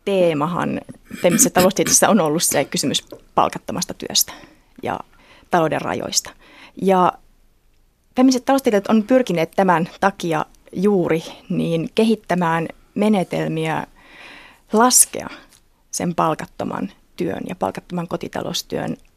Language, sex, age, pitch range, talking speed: Finnish, female, 30-49, 165-225 Hz, 90 wpm